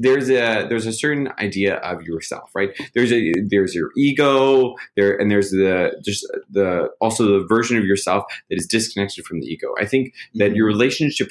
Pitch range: 95-120 Hz